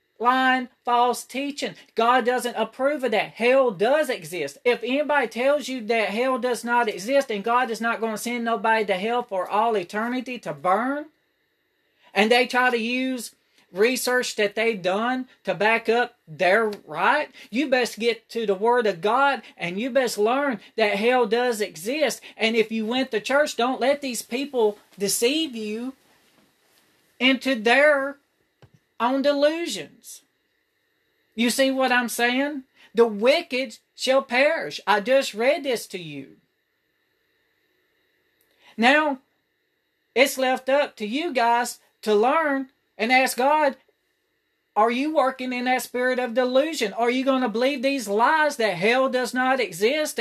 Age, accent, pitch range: 40-59, American, 225-275 Hz